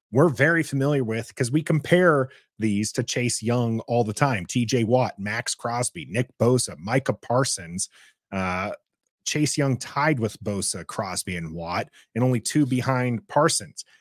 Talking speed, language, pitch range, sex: 155 wpm, English, 115-155 Hz, male